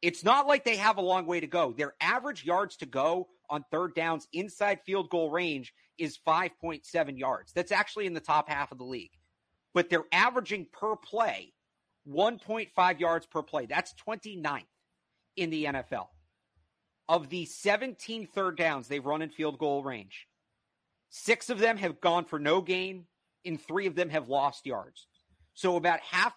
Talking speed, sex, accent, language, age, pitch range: 175 wpm, male, American, English, 50-69, 145-185 Hz